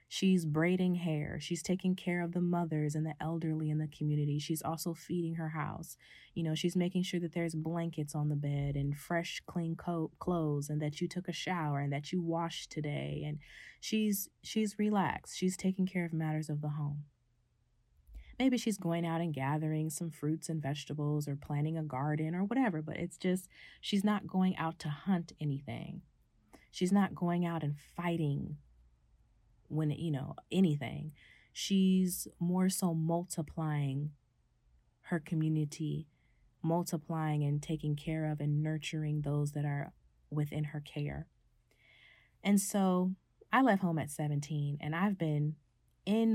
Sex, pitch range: female, 150-175 Hz